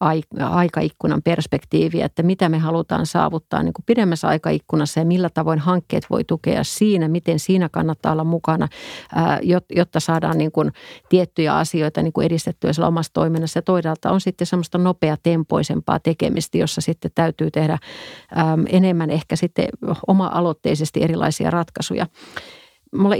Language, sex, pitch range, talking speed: Finnish, female, 160-195 Hz, 135 wpm